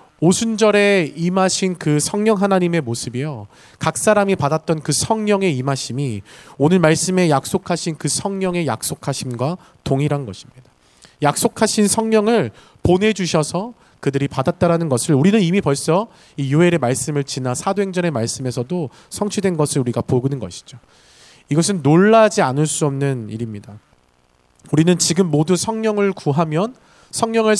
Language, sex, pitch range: Korean, male, 140-195 Hz